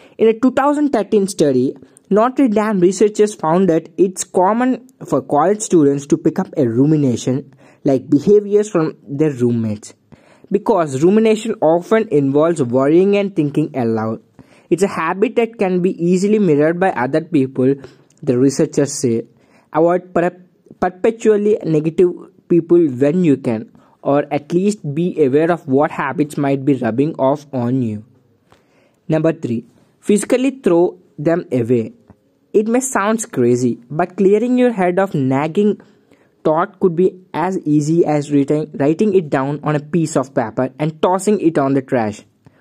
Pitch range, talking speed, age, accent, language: 140-205 Hz, 145 wpm, 20-39, Indian, English